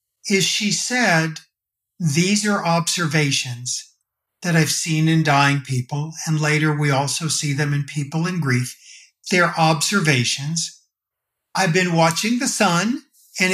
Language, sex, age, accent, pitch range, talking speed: English, male, 50-69, American, 150-200 Hz, 135 wpm